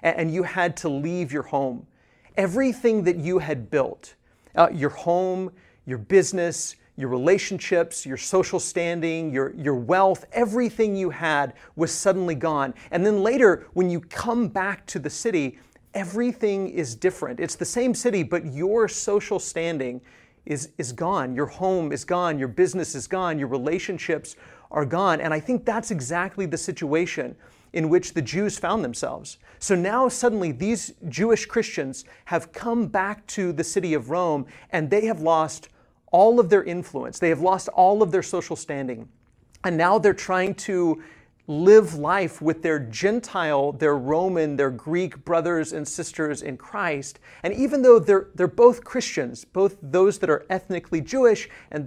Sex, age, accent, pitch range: male, 40-59, American, 155-200 Hz